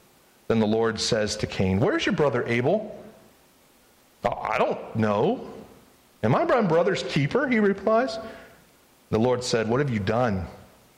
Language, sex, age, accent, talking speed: English, male, 40-59, American, 150 wpm